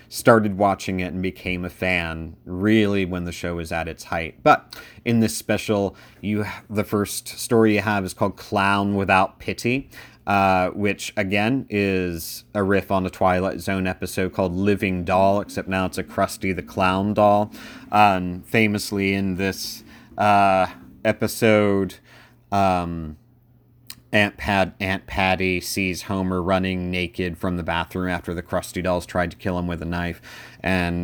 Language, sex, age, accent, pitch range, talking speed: English, male, 30-49, American, 90-110 Hz, 155 wpm